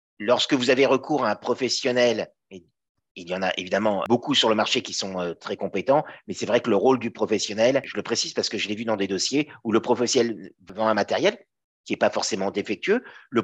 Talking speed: 230 wpm